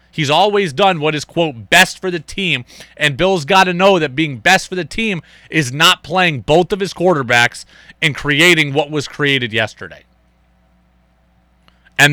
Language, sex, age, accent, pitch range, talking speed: English, male, 30-49, American, 110-170 Hz, 175 wpm